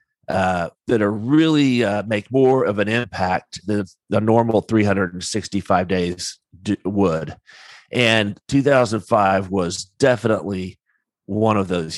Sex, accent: male, American